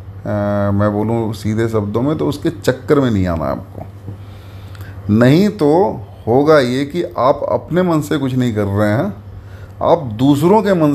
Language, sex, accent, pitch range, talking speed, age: Hindi, male, native, 100-130 Hz, 170 wpm, 30-49